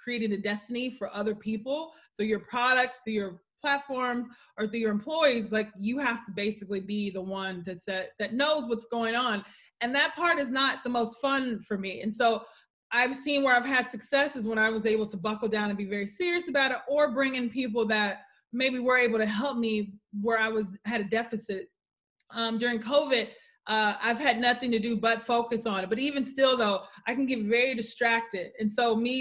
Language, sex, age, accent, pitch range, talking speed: English, female, 20-39, American, 210-255 Hz, 215 wpm